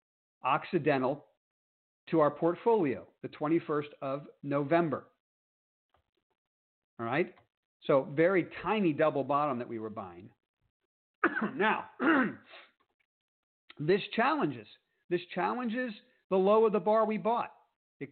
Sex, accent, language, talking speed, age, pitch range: male, American, English, 105 wpm, 50-69, 135-185 Hz